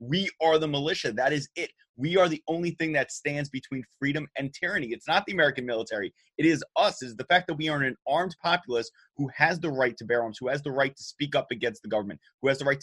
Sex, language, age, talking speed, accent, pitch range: male, English, 30-49, 260 wpm, American, 120-155 Hz